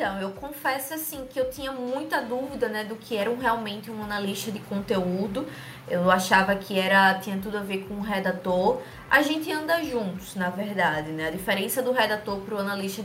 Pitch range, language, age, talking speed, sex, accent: 195-250 Hz, Portuguese, 20-39, 200 wpm, female, Brazilian